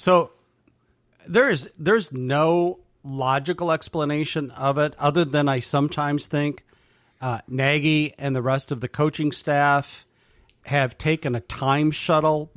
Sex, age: male, 40-59